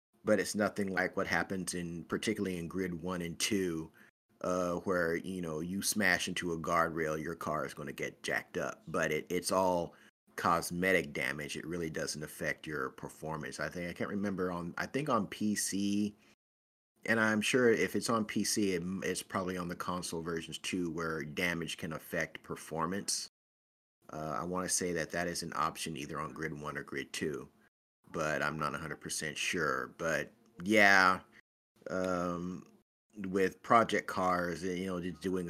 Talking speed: 175 wpm